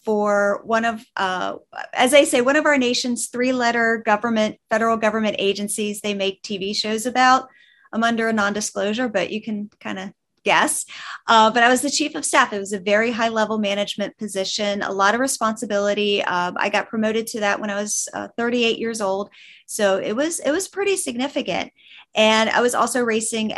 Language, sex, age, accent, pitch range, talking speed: English, female, 30-49, American, 200-240 Hz, 190 wpm